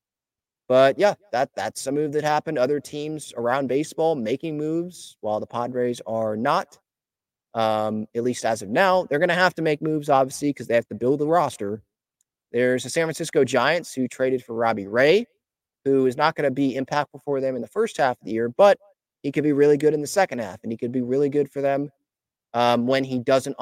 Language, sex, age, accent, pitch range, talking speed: English, male, 30-49, American, 120-150 Hz, 225 wpm